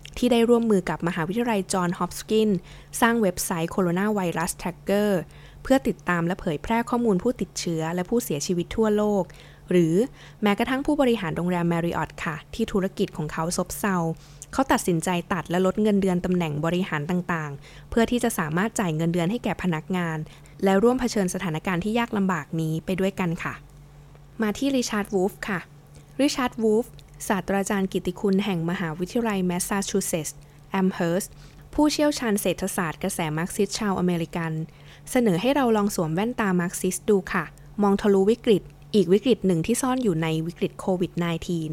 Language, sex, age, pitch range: Thai, female, 20-39, 170-215 Hz